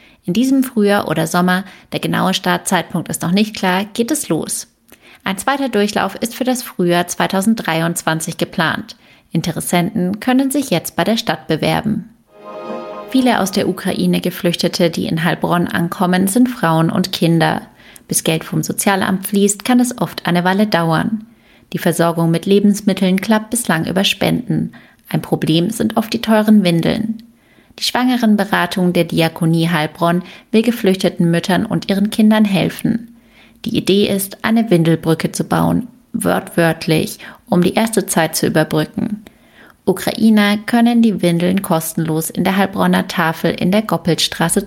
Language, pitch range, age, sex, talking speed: German, 170-220 Hz, 30-49, female, 145 wpm